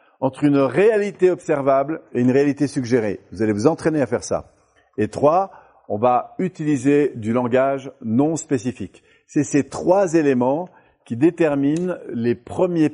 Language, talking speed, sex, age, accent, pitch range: French, 150 wpm, male, 50-69, French, 120-155 Hz